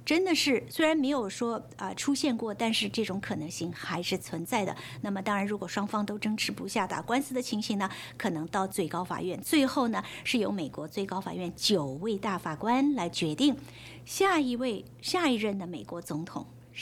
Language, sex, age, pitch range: English, female, 60-79, 190-265 Hz